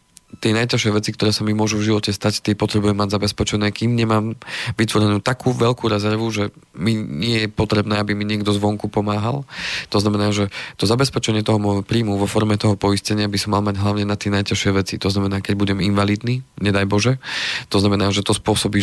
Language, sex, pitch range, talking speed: Slovak, male, 100-110 Hz, 200 wpm